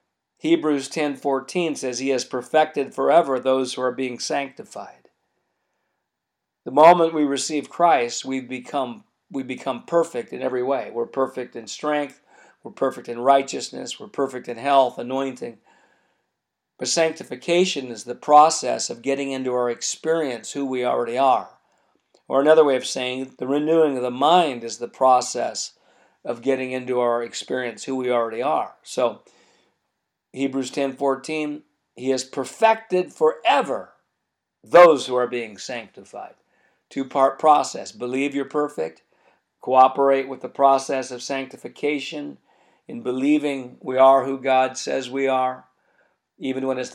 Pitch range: 125-145 Hz